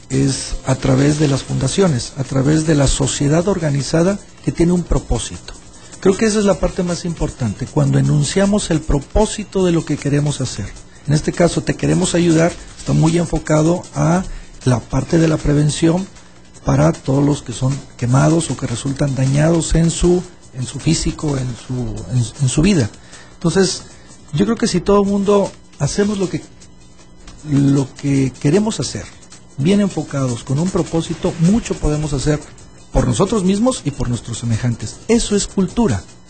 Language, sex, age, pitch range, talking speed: English, male, 50-69, 135-180 Hz, 170 wpm